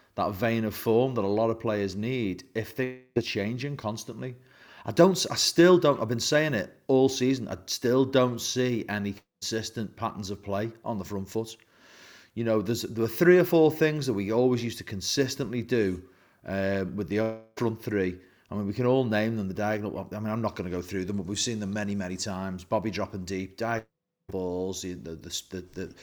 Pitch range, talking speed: 95-125 Hz, 215 wpm